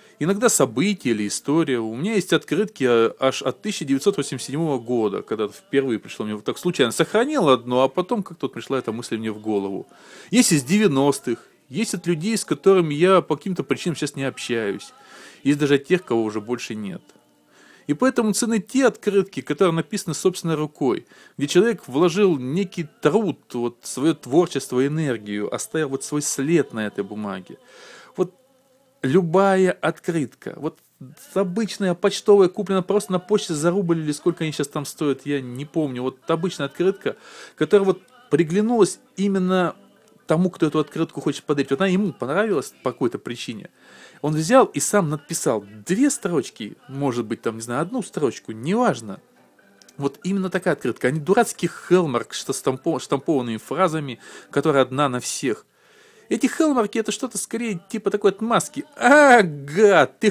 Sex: male